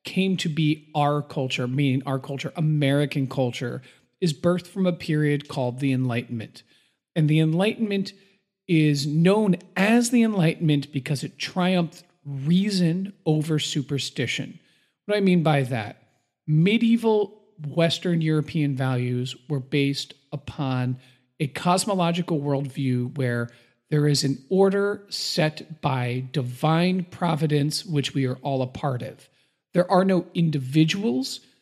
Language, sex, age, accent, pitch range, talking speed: English, male, 40-59, American, 140-185 Hz, 130 wpm